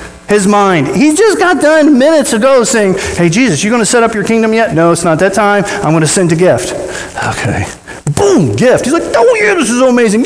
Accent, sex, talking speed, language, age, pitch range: American, male, 220 wpm, English, 40-59, 155-245 Hz